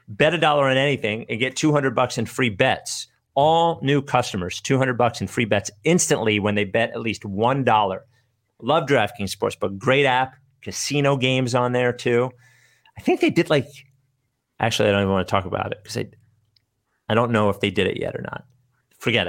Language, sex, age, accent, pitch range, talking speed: English, male, 40-59, American, 105-130 Hz, 210 wpm